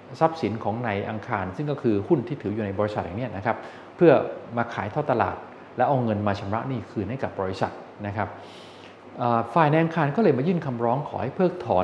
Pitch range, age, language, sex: 105-140 Hz, 20-39, Thai, male